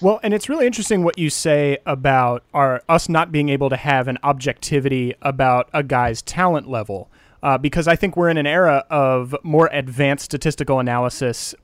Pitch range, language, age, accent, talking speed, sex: 130-155 Hz, English, 30-49, American, 185 wpm, male